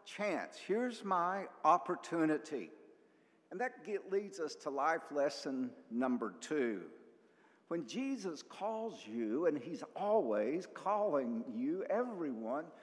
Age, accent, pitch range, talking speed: 60-79, American, 140-220 Hz, 110 wpm